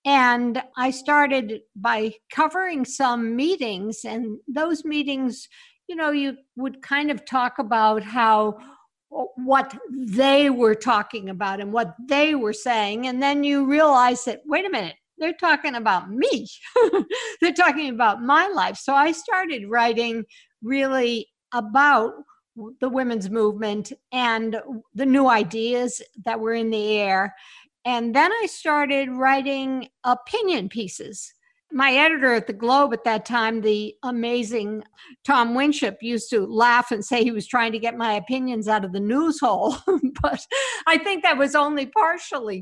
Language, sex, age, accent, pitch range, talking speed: English, female, 60-79, American, 225-285 Hz, 150 wpm